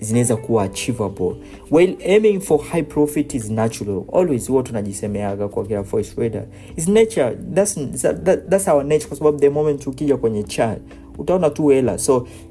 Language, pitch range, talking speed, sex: Swahili, 100-130 Hz, 175 wpm, male